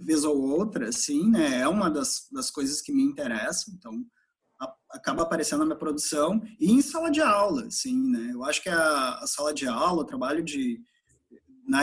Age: 20-39